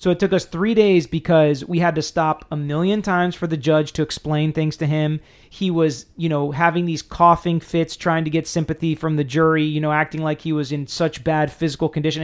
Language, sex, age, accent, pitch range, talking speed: English, male, 30-49, American, 150-170 Hz, 235 wpm